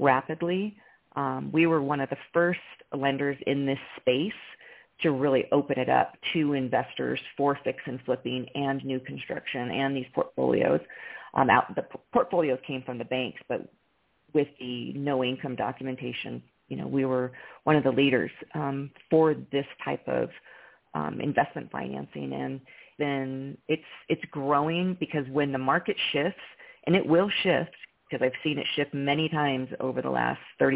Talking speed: 165 wpm